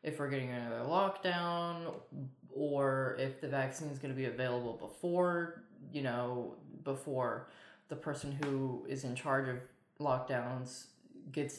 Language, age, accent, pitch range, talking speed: English, 20-39, American, 130-170 Hz, 140 wpm